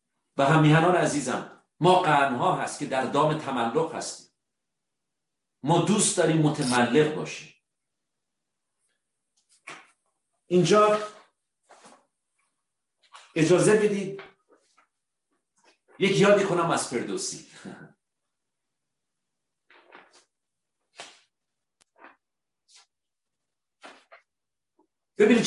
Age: 50-69